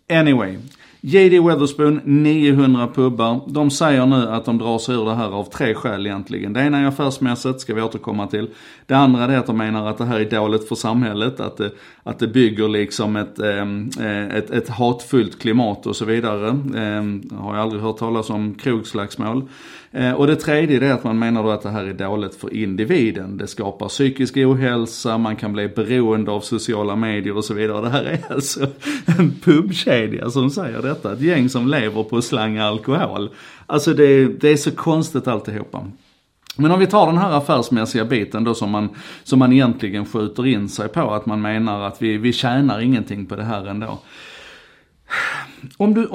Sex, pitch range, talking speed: male, 105-135 Hz, 185 wpm